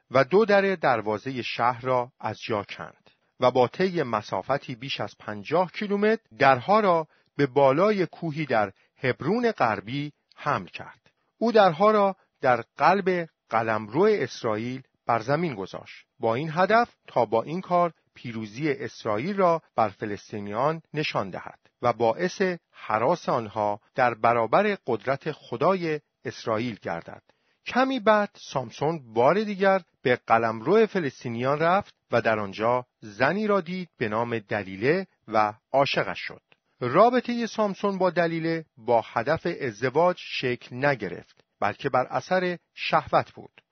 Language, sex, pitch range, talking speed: Persian, male, 125-185 Hz, 135 wpm